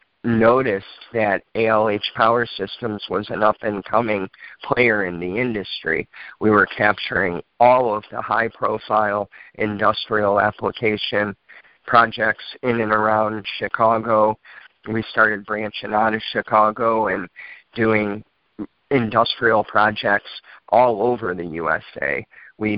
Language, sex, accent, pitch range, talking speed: English, male, American, 105-110 Hz, 110 wpm